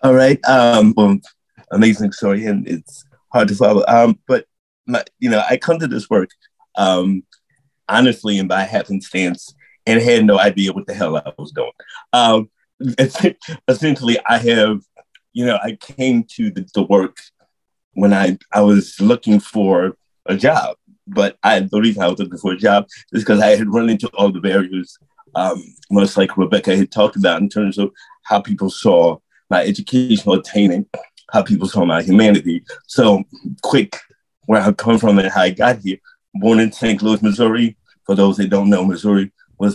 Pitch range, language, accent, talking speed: 100-120 Hz, English, American, 180 wpm